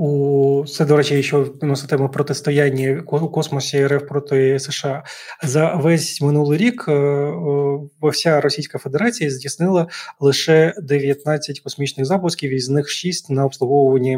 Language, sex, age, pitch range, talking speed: Ukrainian, male, 20-39, 135-155 Hz, 125 wpm